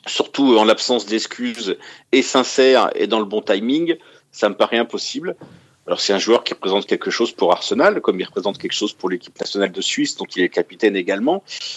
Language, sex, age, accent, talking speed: French, male, 40-59, French, 205 wpm